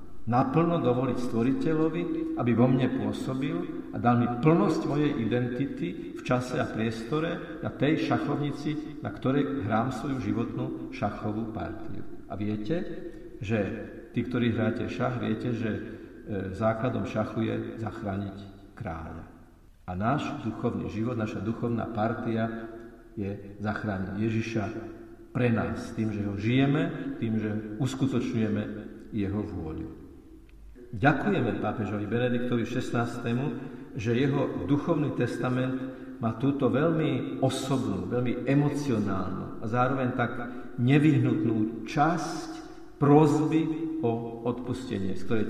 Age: 50-69